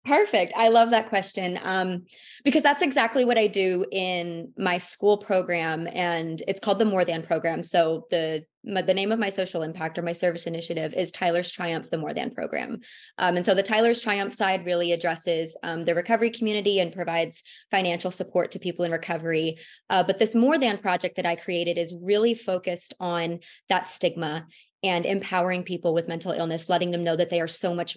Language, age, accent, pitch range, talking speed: English, 20-39, American, 170-215 Hz, 200 wpm